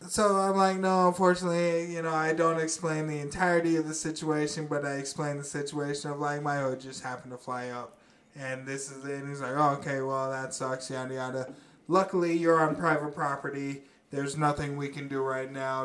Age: 20-39